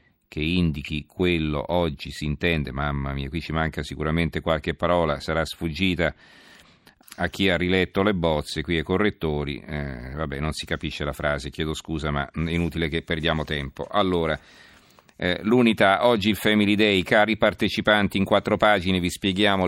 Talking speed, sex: 160 wpm, male